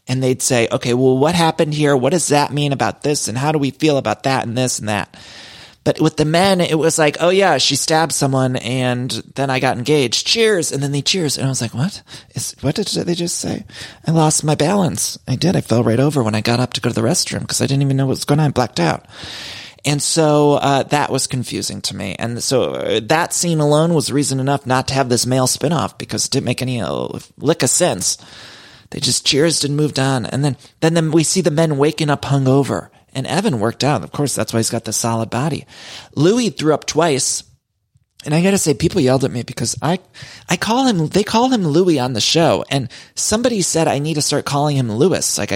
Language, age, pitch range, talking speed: English, 30-49, 120-160 Hz, 245 wpm